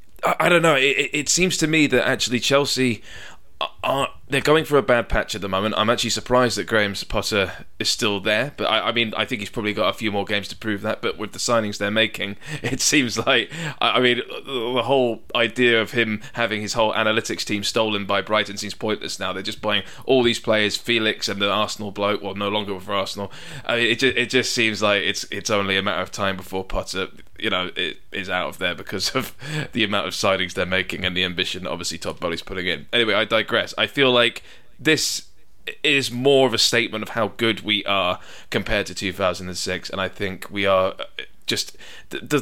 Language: English